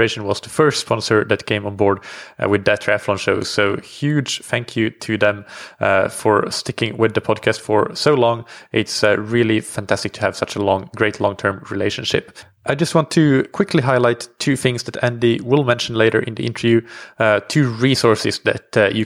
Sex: male